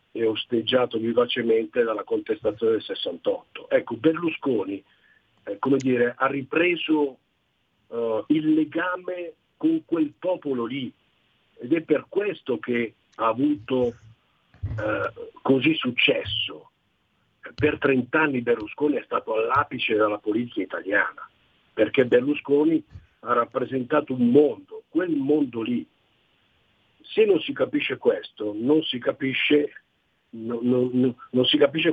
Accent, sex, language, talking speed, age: native, male, Italian, 110 wpm, 50-69